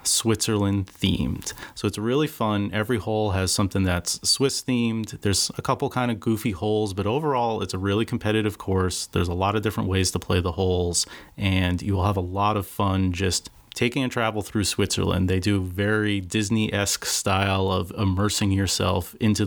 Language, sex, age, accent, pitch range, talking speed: English, male, 30-49, American, 95-110 Hz, 185 wpm